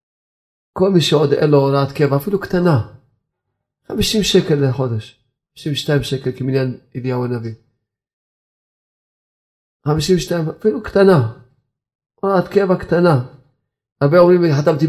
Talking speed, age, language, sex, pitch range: 110 wpm, 40-59, Hebrew, male, 125-150 Hz